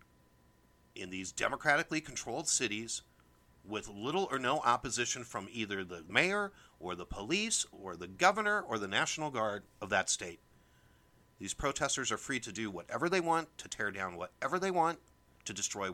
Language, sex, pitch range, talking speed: English, male, 95-150 Hz, 165 wpm